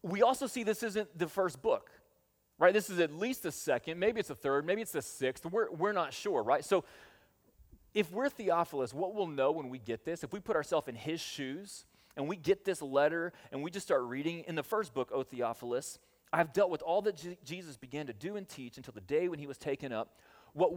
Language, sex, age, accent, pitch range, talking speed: English, male, 30-49, American, 130-180 Hz, 245 wpm